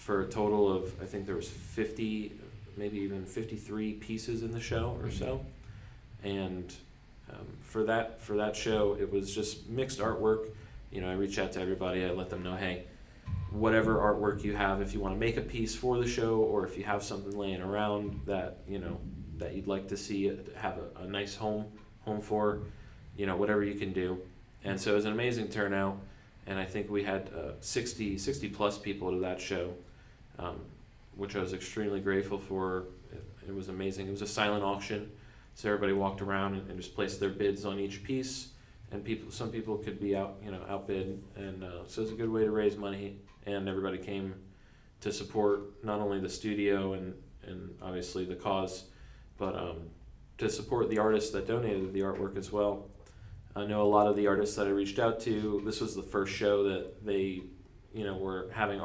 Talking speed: 205 wpm